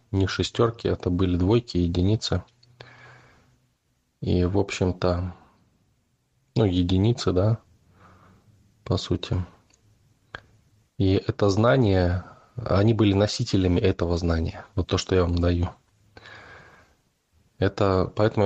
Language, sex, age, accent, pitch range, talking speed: Russian, male, 20-39, native, 90-105 Hz, 100 wpm